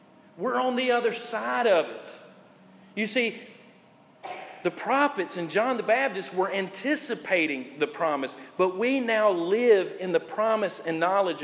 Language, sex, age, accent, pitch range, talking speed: English, male, 40-59, American, 180-230 Hz, 145 wpm